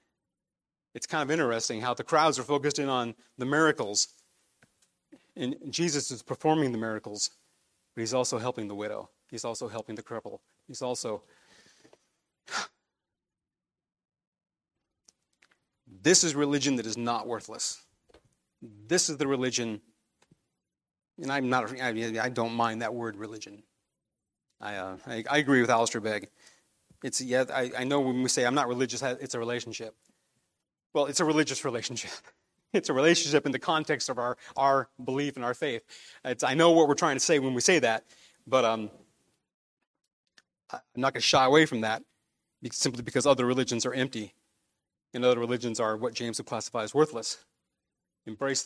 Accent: American